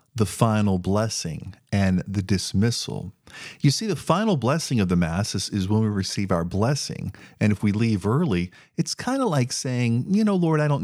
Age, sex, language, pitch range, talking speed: 40-59, male, English, 95-130 Hz, 200 wpm